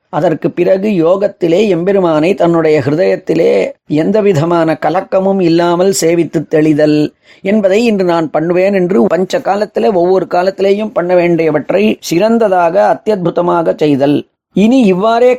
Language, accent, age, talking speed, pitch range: Tamil, native, 30-49, 105 wpm, 165-205 Hz